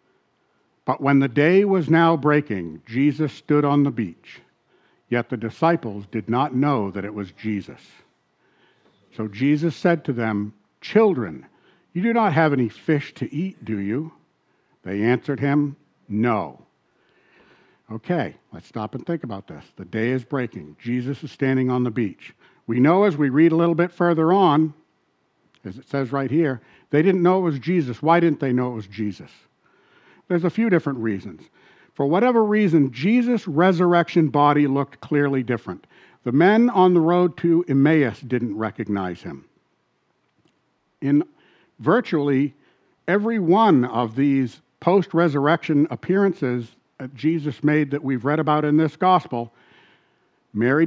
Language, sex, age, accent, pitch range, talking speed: English, male, 60-79, American, 125-165 Hz, 155 wpm